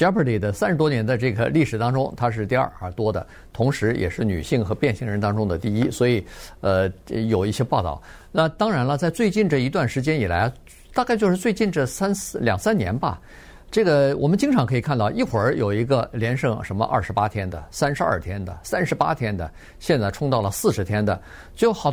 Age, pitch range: 50-69, 110-155 Hz